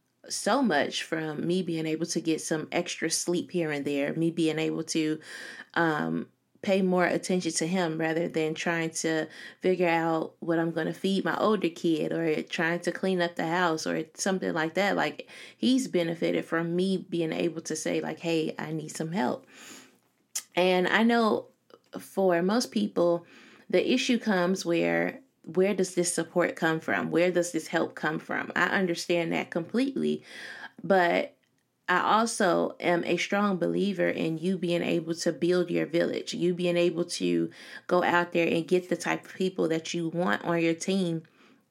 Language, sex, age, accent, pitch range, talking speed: English, female, 20-39, American, 160-180 Hz, 180 wpm